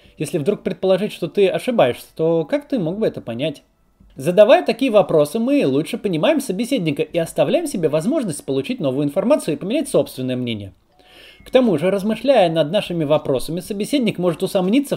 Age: 20-39